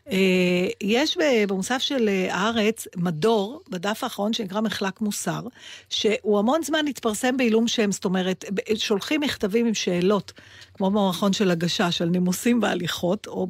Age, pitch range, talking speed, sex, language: 50-69, 185-235 Hz, 135 wpm, female, Hebrew